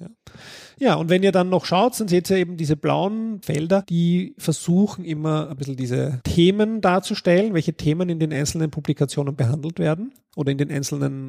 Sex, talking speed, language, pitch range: male, 185 wpm, German, 145-180 Hz